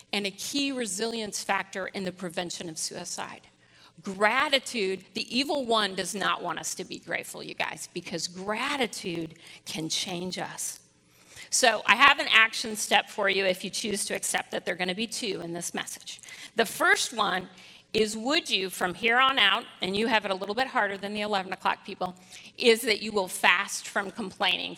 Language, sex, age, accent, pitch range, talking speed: English, female, 40-59, American, 185-230 Hz, 195 wpm